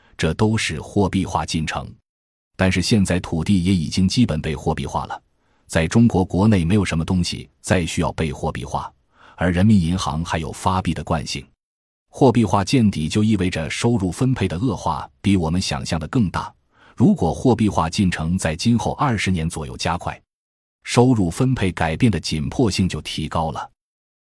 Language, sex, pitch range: Chinese, male, 80-115 Hz